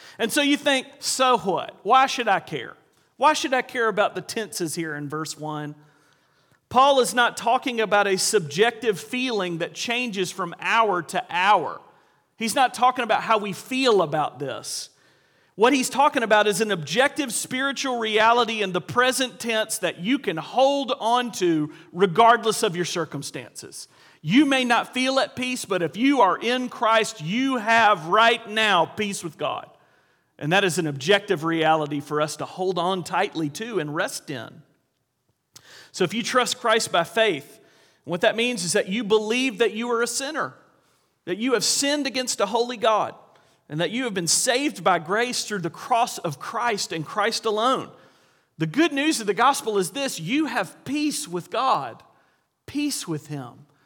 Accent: American